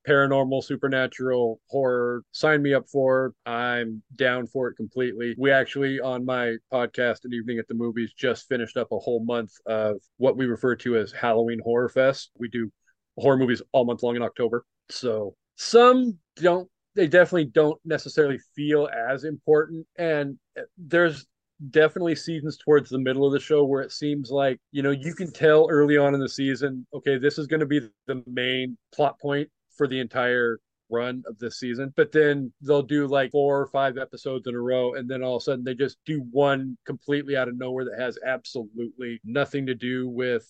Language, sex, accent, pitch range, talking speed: English, male, American, 120-145 Hz, 195 wpm